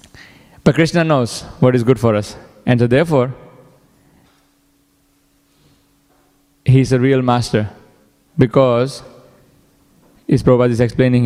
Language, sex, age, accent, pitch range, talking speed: English, male, 20-39, Indian, 125-150 Hz, 105 wpm